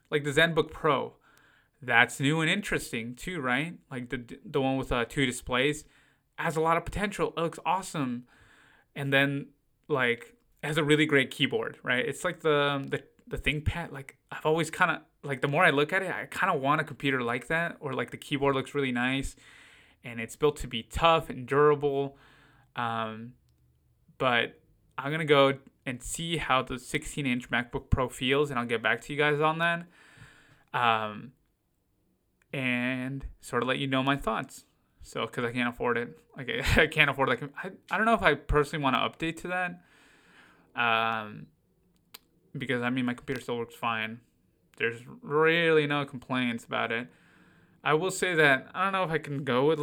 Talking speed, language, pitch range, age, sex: 190 wpm, English, 125-155 Hz, 20-39, male